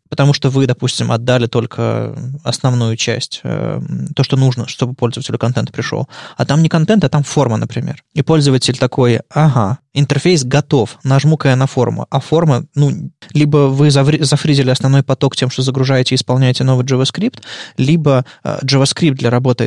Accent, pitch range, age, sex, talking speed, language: native, 115-140 Hz, 20-39, male, 170 wpm, Russian